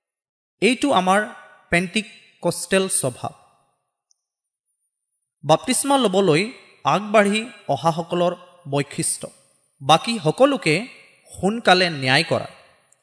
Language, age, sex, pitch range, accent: Malayalam, 30-49, male, 140-210 Hz, native